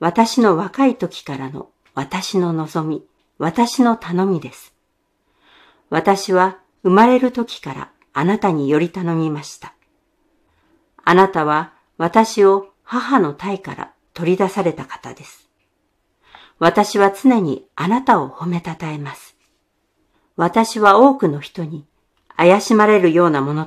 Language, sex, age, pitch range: Japanese, female, 50-69, 160-215 Hz